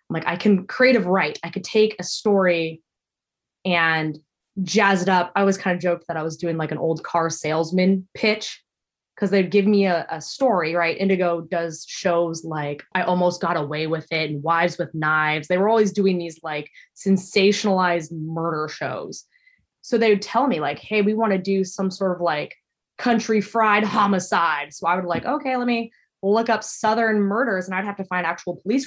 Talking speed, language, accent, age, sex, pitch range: 200 wpm, English, American, 20-39, female, 170-215 Hz